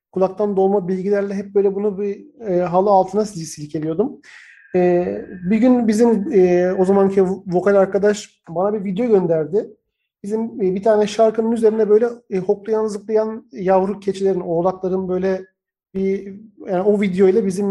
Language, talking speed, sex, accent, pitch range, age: Turkish, 155 wpm, male, native, 185-215 Hz, 40-59